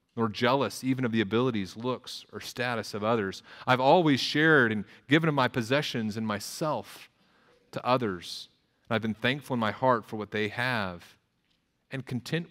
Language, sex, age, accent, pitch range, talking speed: English, male, 30-49, American, 105-125 Hz, 170 wpm